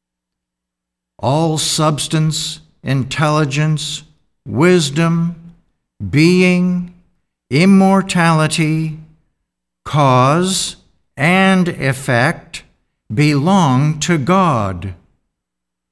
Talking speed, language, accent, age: 45 wpm, English, American, 60-79